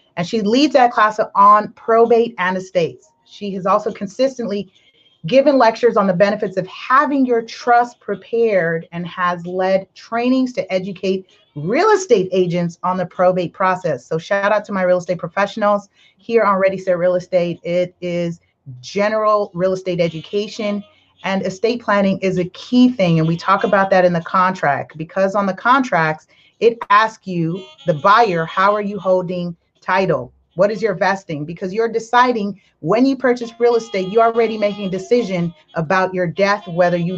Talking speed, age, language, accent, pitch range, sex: 175 wpm, 30-49, English, American, 180-230 Hz, female